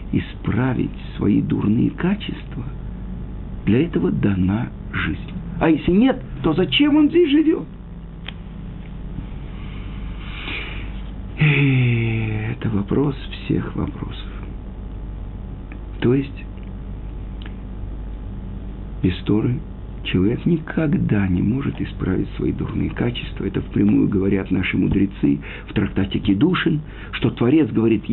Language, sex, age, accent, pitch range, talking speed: Russian, male, 50-69, native, 100-160 Hz, 90 wpm